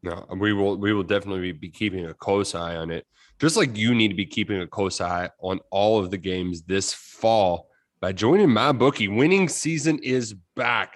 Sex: male